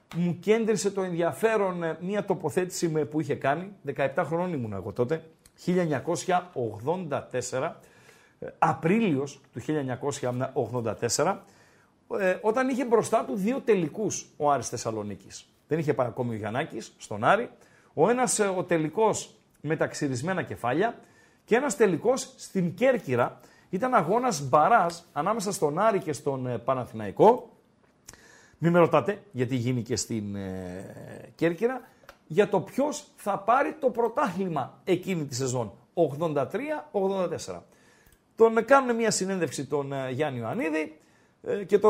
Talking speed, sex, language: 125 wpm, male, Greek